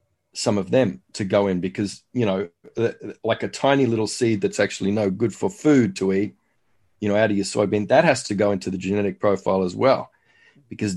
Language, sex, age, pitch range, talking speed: English, male, 40-59, 95-110 Hz, 215 wpm